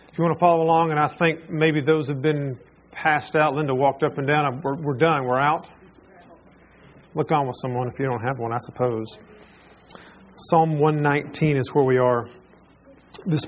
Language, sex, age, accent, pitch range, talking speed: English, male, 40-59, American, 150-200 Hz, 190 wpm